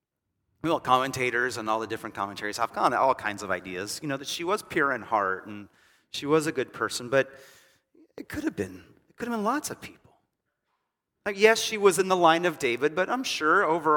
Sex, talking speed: male, 230 wpm